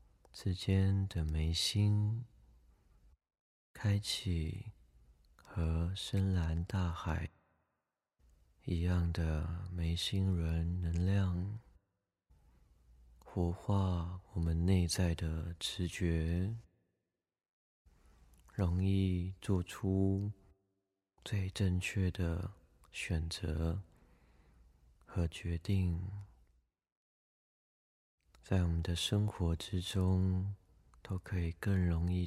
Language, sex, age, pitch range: Chinese, male, 30-49, 80-95 Hz